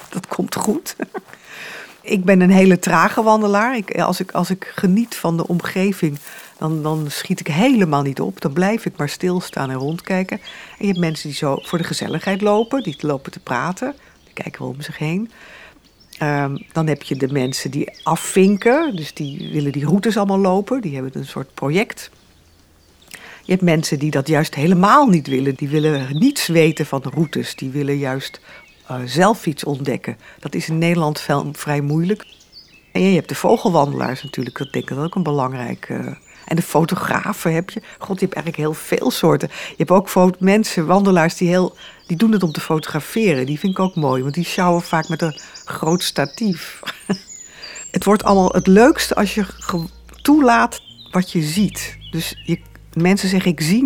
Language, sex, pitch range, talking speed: Dutch, female, 145-195 Hz, 180 wpm